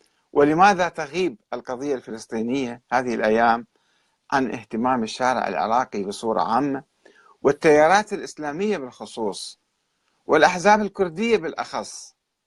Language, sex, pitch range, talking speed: Arabic, male, 120-165 Hz, 85 wpm